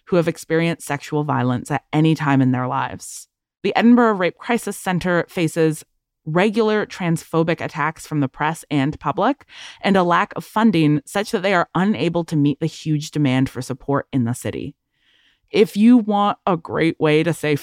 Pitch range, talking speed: 145-190 Hz, 180 wpm